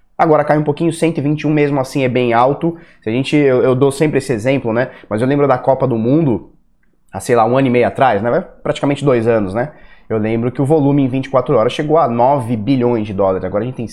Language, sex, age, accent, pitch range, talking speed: Portuguese, male, 20-39, Brazilian, 125-160 Hz, 250 wpm